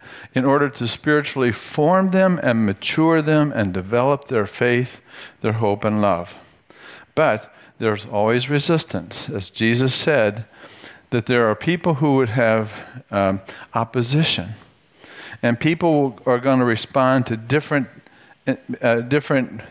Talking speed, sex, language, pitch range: 130 wpm, male, English, 105-140 Hz